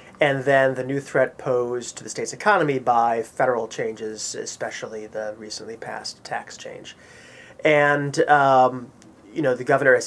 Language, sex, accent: English, male, American